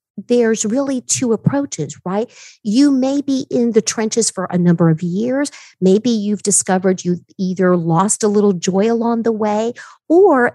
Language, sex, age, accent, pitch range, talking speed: English, female, 50-69, American, 185-235 Hz, 165 wpm